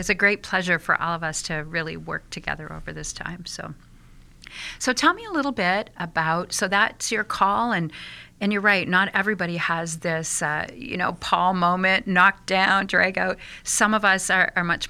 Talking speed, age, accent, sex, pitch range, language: 200 wpm, 40-59, American, female, 175-215 Hz, English